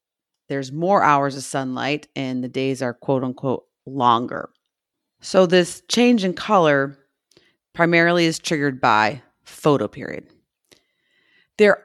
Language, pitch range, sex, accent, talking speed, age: English, 150-195 Hz, female, American, 120 wpm, 30-49